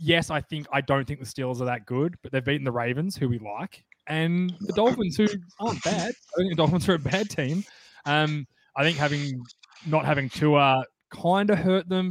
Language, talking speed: English, 230 wpm